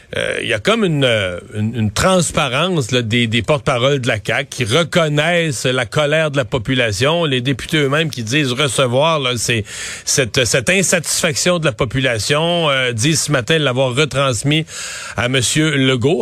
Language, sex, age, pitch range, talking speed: French, male, 40-59, 125-155 Hz, 180 wpm